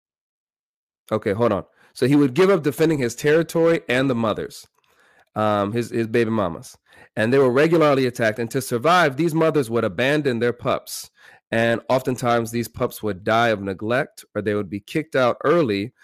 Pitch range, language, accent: 105-135 Hz, English, American